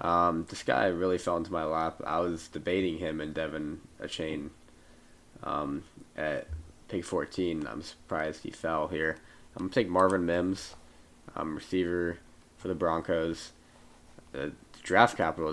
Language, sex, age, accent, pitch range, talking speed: English, male, 20-39, American, 80-85 Hz, 145 wpm